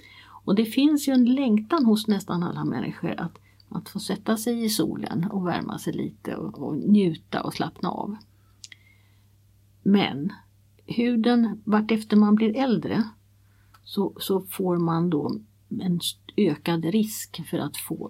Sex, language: female, Swedish